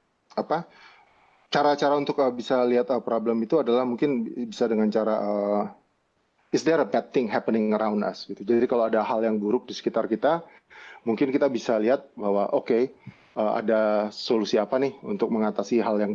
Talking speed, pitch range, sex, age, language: 165 wpm, 110-130 Hz, male, 30-49, Indonesian